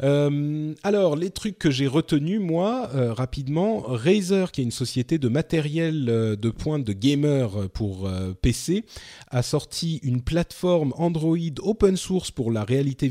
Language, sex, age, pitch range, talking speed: French, male, 30-49, 110-155 Hz, 165 wpm